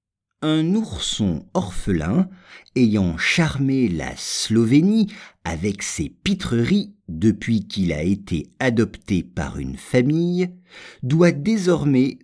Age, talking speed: 50-69, 100 wpm